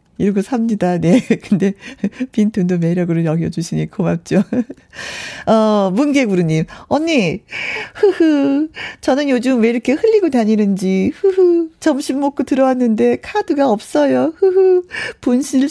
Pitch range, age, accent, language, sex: 180-280 Hz, 40-59, native, Korean, female